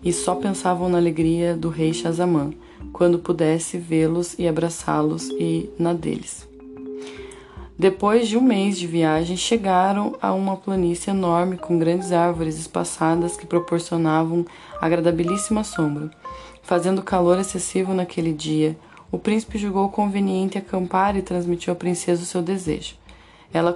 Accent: Brazilian